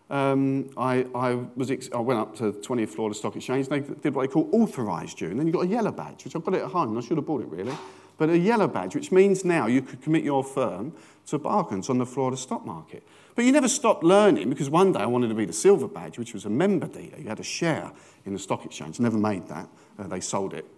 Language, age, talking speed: English, 40-59, 285 wpm